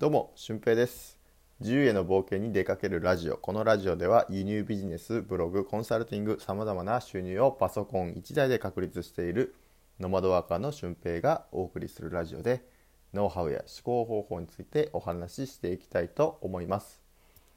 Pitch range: 85-120 Hz